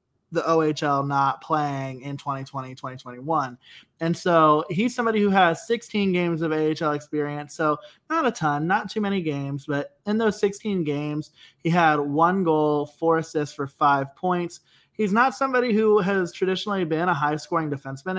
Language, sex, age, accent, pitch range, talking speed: English, male, 20-39, American, 140-180 Hz, 170 wpm